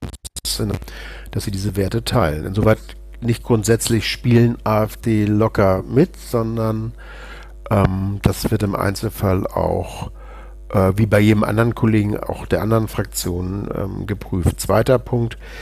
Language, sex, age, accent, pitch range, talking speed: German, male, 50-69, German, 100-115 Hz, 125 wpm